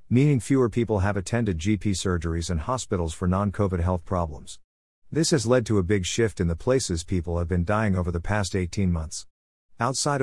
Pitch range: 85-110 Hz